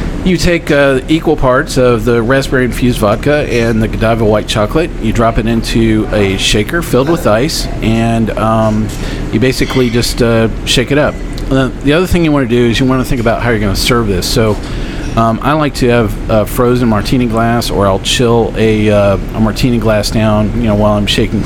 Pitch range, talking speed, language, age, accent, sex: 105-130 Hz, 215 wpm, English, 40-59, American, male